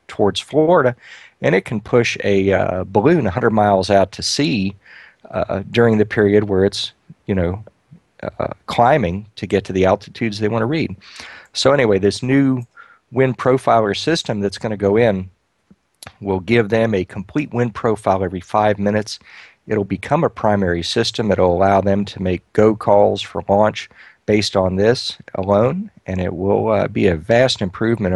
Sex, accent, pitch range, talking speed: male, American, 95-110 Hz, 175 wpm